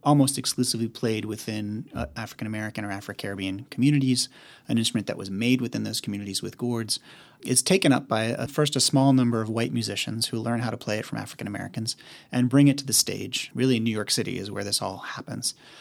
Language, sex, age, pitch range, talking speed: English, male, 30-49, 110-135 Hz, 200 wpm